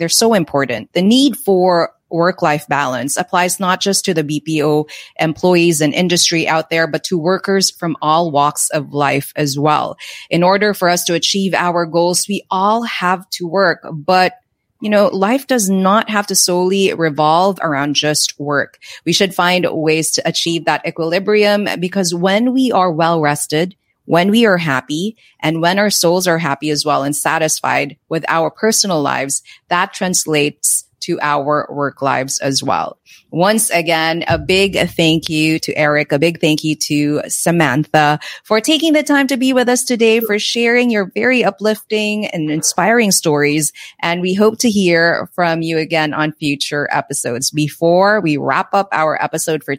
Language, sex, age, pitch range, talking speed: English, female, 30-49, 150-195 Hz, 175 wpm